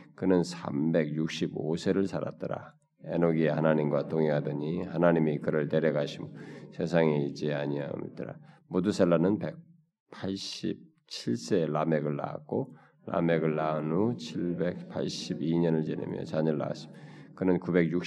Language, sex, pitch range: Korean, male, 75-90 Hz